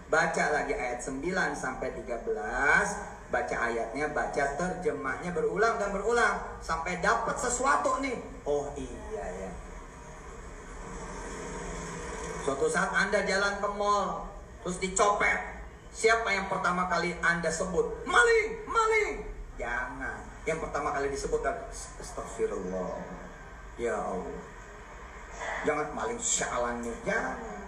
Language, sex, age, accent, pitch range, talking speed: Indonesian, male, 30-49, native, 145-225 Hz, 100 wpm